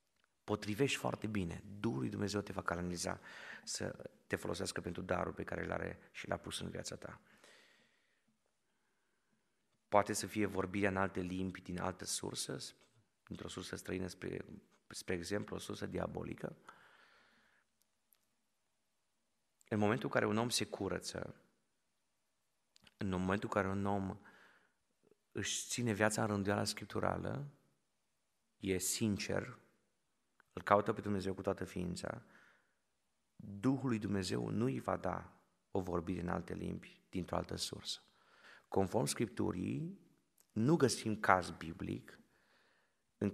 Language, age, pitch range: Romanian, 30-49, 90-105 Hz